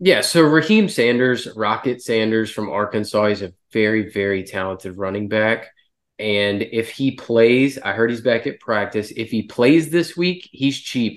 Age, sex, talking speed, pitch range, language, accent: 20-39, male, 170 wpm, 105-130 Hz, English, American